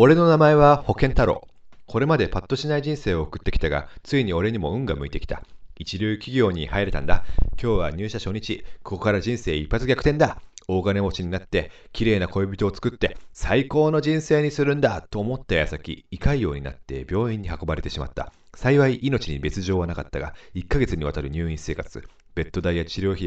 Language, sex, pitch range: Japanese, male, 85-115 Hz